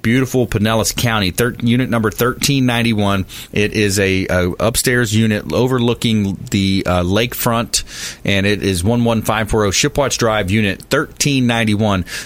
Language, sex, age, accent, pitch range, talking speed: English, male, 30-49, American, 95-120 Hz, 115 wpm